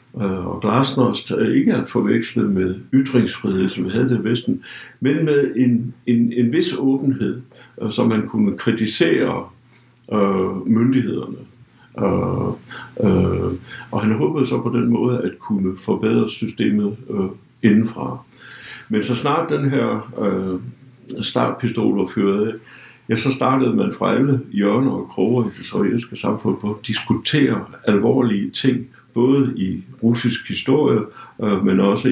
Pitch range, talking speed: 105-130 Hz, 140 wpm